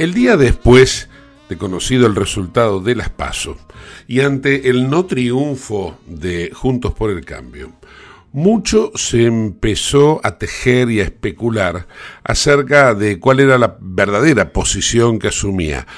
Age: 50-69